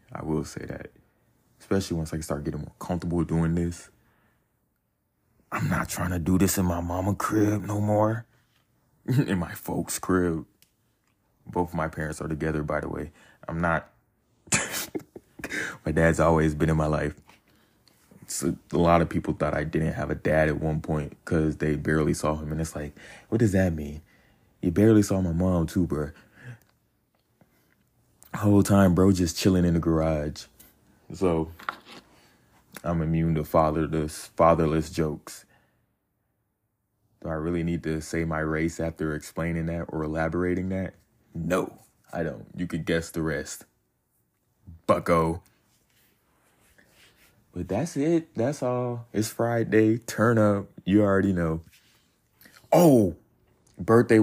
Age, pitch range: 20-39, 80-100 Hz